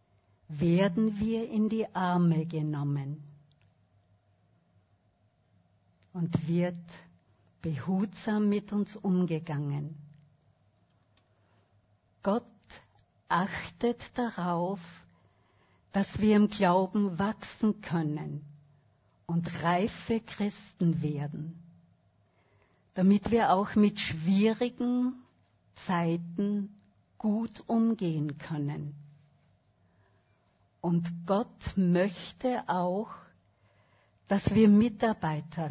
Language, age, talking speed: German, 60-79, 70 wpm